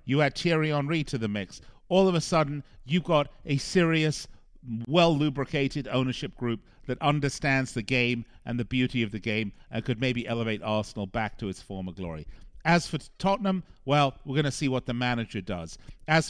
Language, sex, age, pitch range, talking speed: English, male, 50-69, 110-155 Hz, 190 wpm